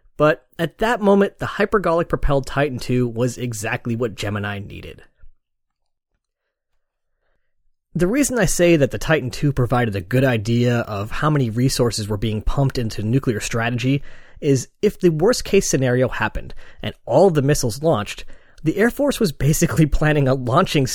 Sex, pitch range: male, 115-155 Hz